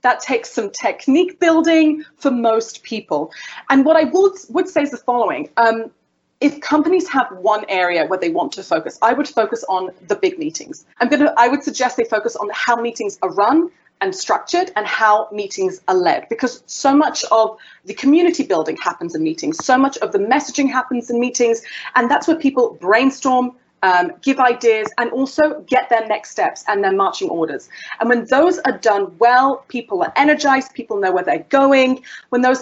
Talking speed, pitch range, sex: 195 wpm, 225-310 Hz, female